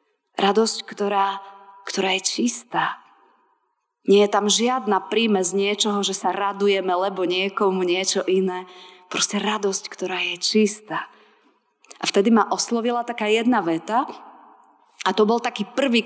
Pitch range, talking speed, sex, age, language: 180-220 Hz, 135 wpm, female, 30-49, Slovak